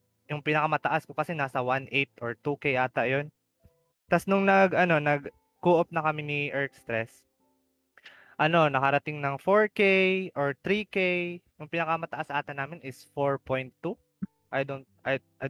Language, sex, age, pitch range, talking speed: Filipino, male, 20-39, 130-160 Hz, 135 wpm